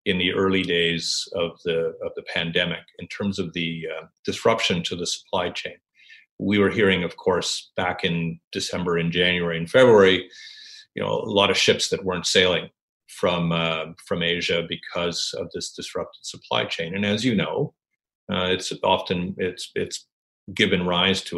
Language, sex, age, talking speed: English, male, 40-59, 175 wpm